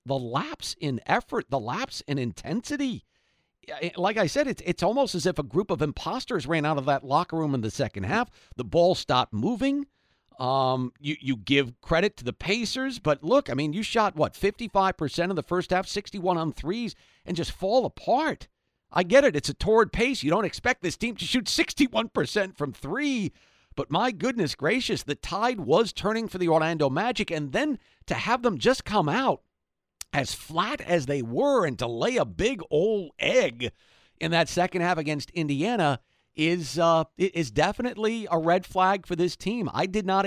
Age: 50-69